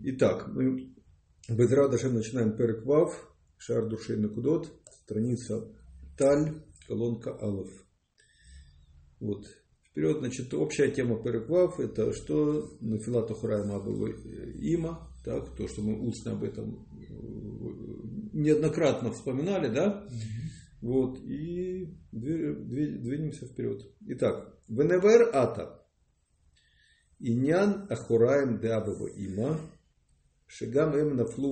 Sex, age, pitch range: male, 50-69, 105-150 Hz